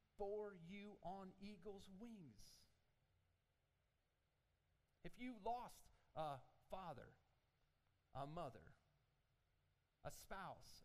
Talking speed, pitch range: 75 wpm, 145-235 Hz